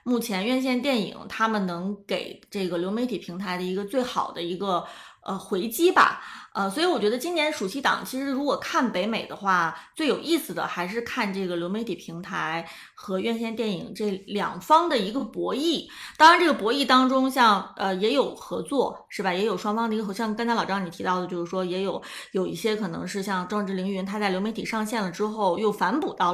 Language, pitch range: Chinese, 190-240 Hz